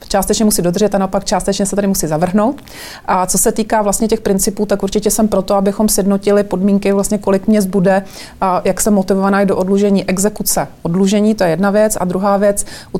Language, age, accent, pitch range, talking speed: Czech, 30-49, native, 180-200 Hz, 210 wpm